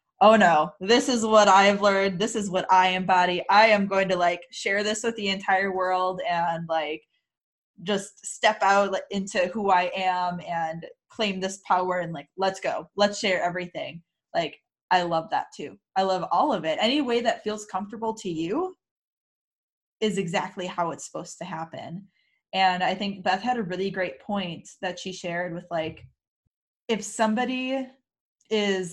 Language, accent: English, American